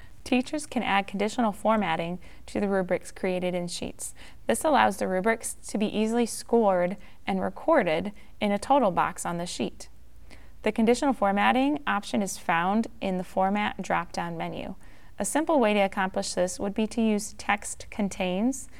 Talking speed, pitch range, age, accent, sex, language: 165 wpm, 185-230 Hz, 20-39, American, female, English